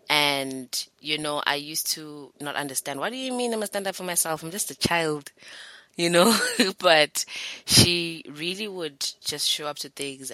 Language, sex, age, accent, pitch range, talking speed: English, female, 20-39, South African, 130-150 Hz, 190 wpm